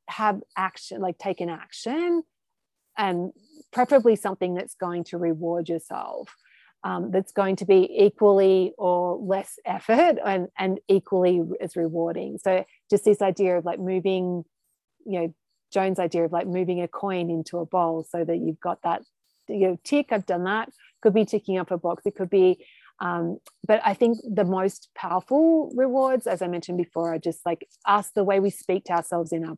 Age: 30-49